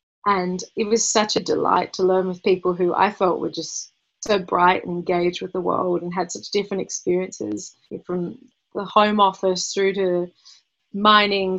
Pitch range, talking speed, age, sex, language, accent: 180-210 Hz, 175 wpm, 30-49, female, English, Australian